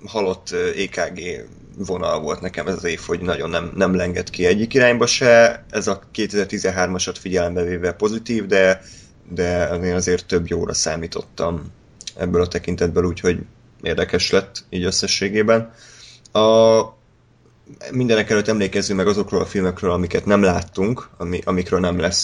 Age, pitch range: 20-39, 90-110 Hz